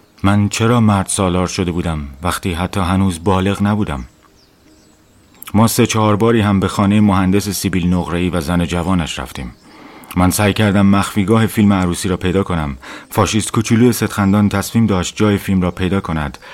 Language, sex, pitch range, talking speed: Persian, male, 90-105 Hz, 160 wpm